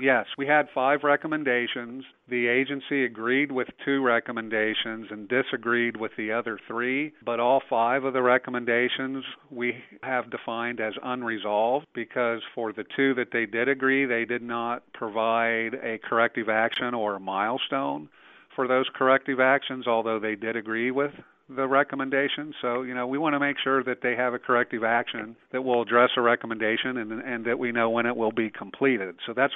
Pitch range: 115-130 Hz